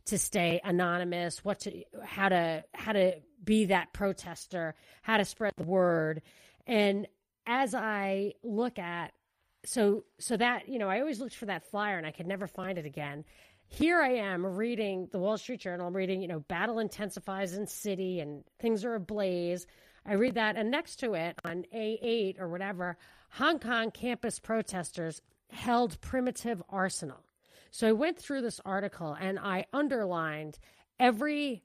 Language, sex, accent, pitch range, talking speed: English, female, American, 175-220 Hz, 165 wpm